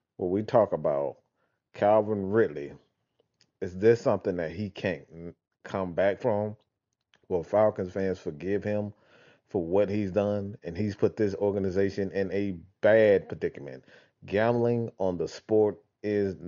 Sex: male